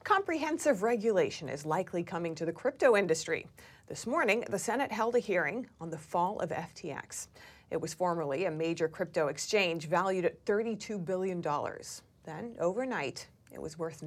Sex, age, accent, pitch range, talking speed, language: female, 30-49, American, 175-230 Hz, 160 wpm, English